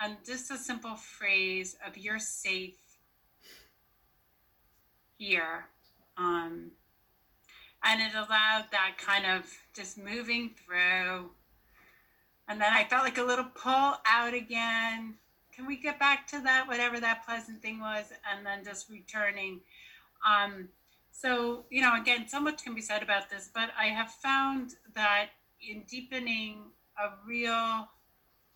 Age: 40-59